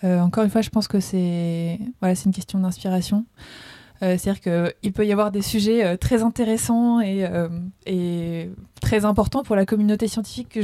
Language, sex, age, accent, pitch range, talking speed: French, female, 20-39, French, 185-220 Hz, 190 wpm